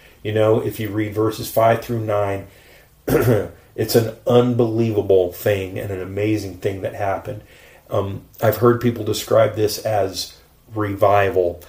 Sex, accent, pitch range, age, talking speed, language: male, American, 95-115 Hz, 40-59, 140 wpm, English